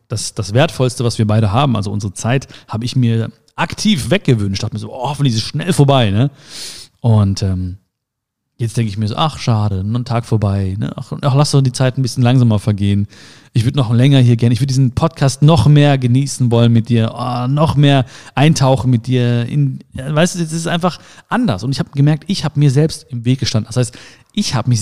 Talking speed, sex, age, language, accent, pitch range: 225 wpm, male, 40-59, German, German, 115-145 Hz